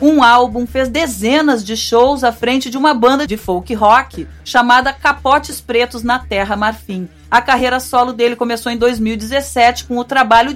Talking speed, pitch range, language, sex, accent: 170 wpm, 215-270 Hz, Portuguese, female, Brazilian